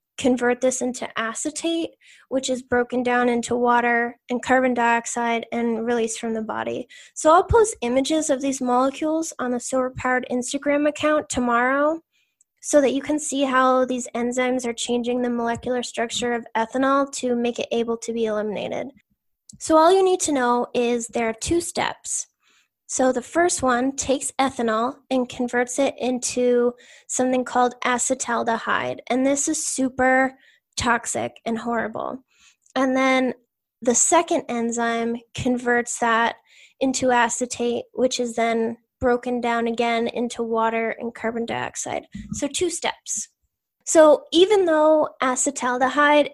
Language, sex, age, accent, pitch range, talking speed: English, female, 10-29, American, 235-275 Hz, 145 wpm